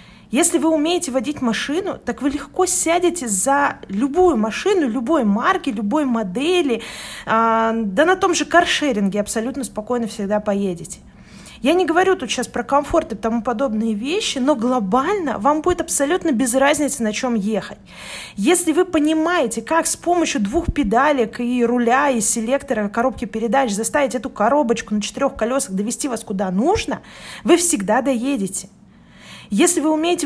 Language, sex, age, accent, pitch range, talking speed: Russian, female, 20-39, native, 220-300 Hz, 150 wpm